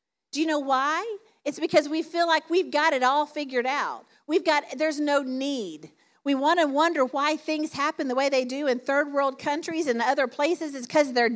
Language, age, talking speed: English, 50-69, 215 wpm